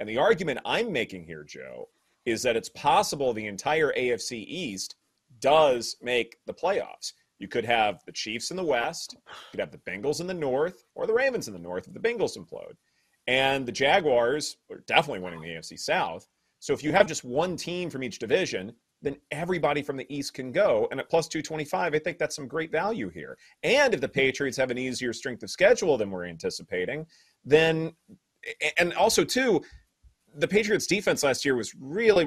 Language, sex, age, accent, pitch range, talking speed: English, male, 30-49, American, 130-175 Hz, 195 wpm